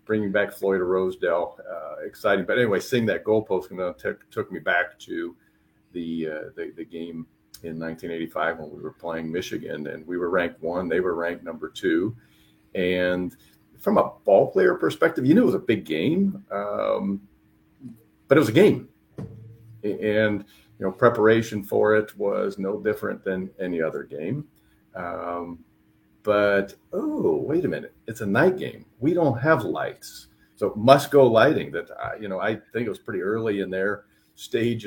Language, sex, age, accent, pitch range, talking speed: English, male, 50-69, American, 90-110 Hz, 165 wpm